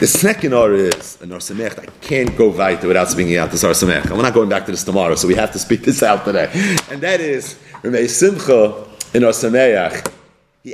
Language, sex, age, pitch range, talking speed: English, male, 40-59, 130-215 Hz, 205 wpm